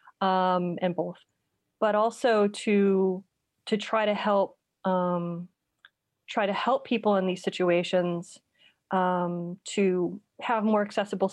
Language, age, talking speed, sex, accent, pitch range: English, 30-49, 120 wpm, female, American, 180-210 Hz